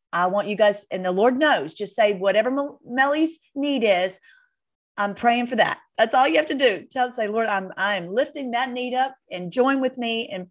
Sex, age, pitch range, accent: female, 40-59, 180-240 Hz, American